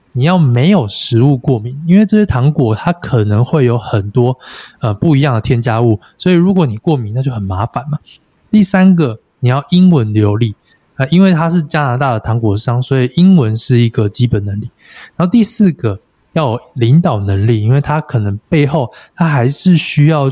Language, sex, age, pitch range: Chinese, male, 20-39, 115-150 Hz